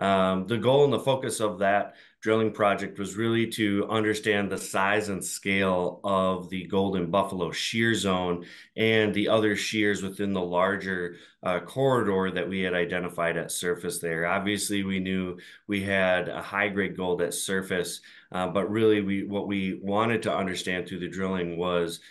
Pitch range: 90-105 Hz